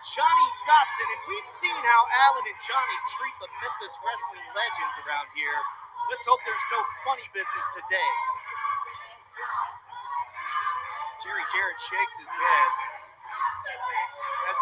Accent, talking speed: American, 120 wpm